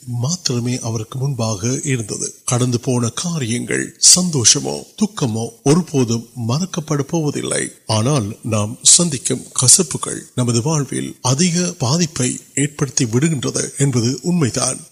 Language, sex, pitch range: Urdu, male, 120-165 Hz